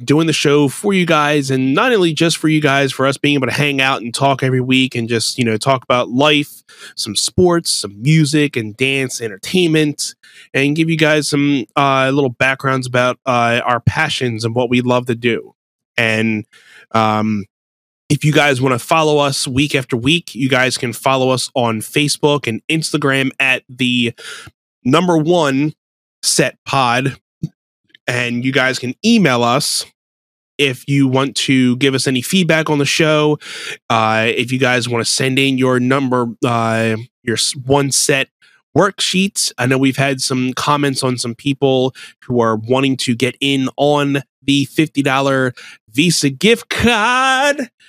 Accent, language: American, English